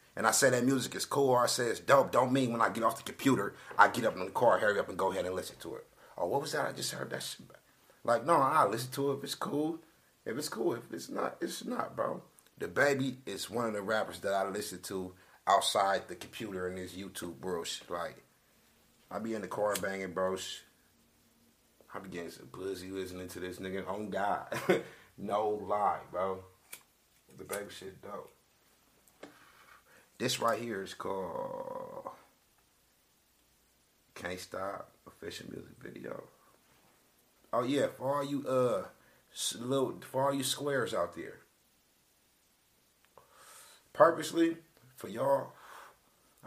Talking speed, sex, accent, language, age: 165 wpm, male, American, English, 30-49